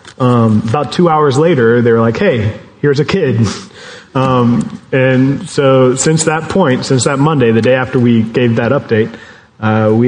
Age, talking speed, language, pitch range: 30-49, 180 wpm, English, 110-130 Hz